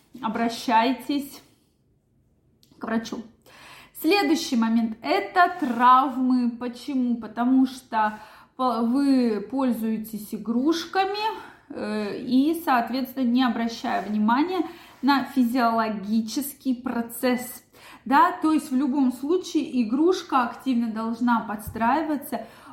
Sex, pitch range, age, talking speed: female, 225-275 Hz, 20-39, 80 wpm